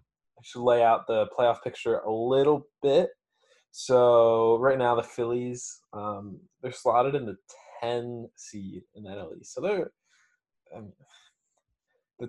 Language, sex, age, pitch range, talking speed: English, male, 20-39, 105-125 Hz, 125 wpm